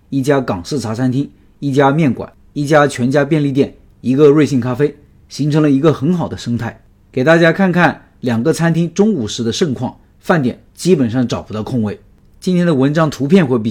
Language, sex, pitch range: Chinese, male, 115-155 Hz